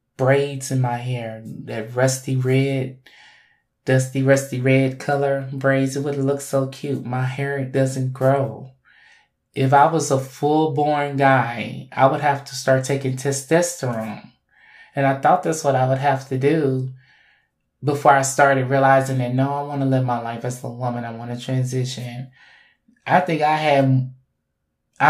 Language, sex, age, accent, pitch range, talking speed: English, male, 20-39, American, 130-145 Hz, 155 wpm